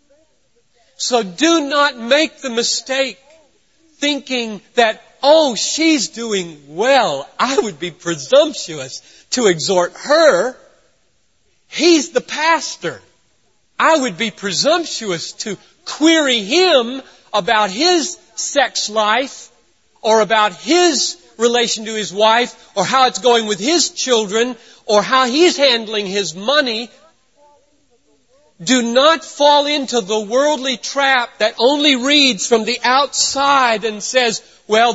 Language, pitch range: English, 180-275 Hz